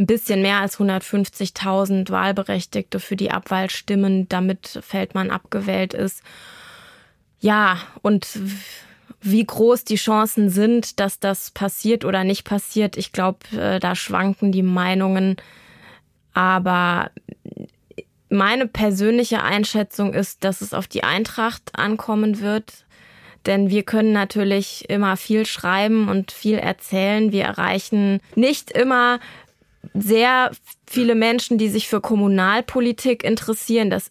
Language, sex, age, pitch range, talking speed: German, female, 20-39, 190-215 Hz, 120 wpm